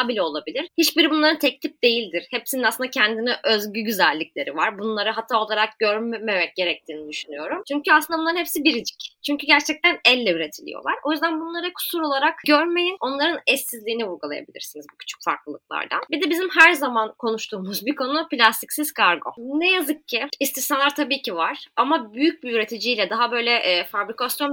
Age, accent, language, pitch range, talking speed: 20-39, native, Turkish, 220-300 Hz, 155 wpm